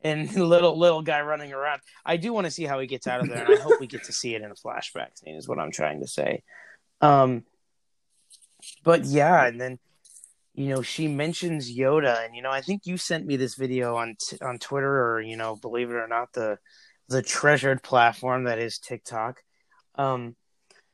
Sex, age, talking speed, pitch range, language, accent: male, 30-49, 210 wpm, 120-150 Hz, English, American